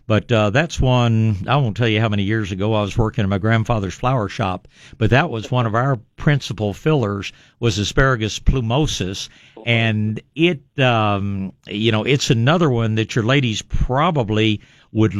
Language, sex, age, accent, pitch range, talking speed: English, male, 60-79, American, 105-135 Hz, 175 wpm